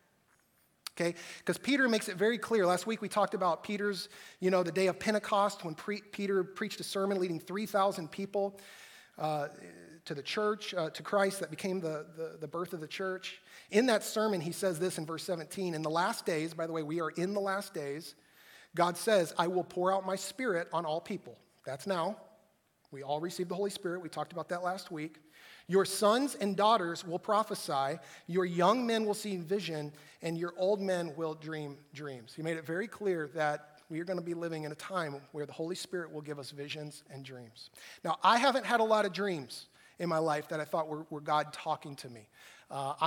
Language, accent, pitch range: English, American, 155-200 Hz